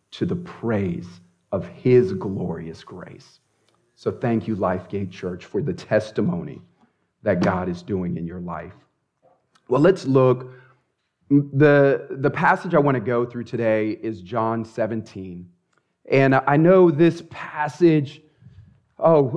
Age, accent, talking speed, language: 40-59, American, 135 wpm, English